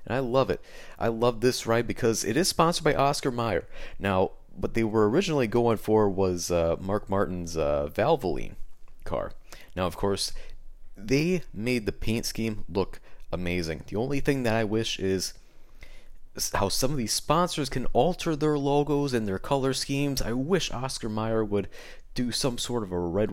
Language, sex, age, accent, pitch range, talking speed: English, male, 30-49, American, 95-125 Hz, 180 wpm